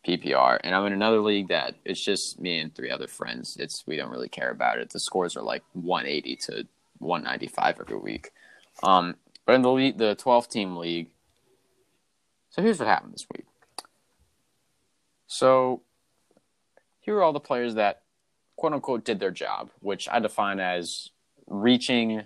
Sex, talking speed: male, 160 wpm